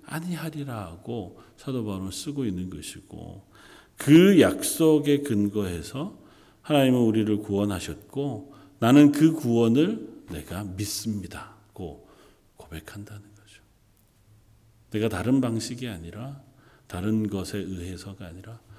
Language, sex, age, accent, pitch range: Korean, male, 40-59, native, 105-160 Hz